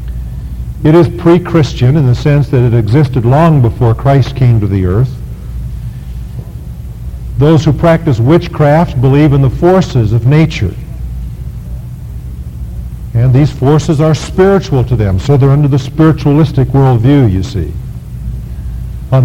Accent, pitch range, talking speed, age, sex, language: American, 105-150 Hz, 130 wpm, 50-69, male, English